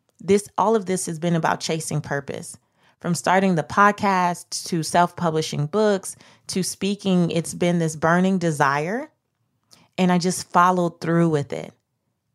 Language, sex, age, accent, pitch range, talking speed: English, female, 20-39, American, 150-185 Hz, 145 wpm